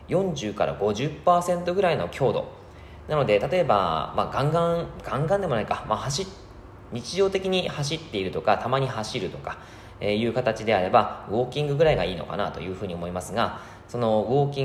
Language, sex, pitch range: Japanese, male, 95-135 Hz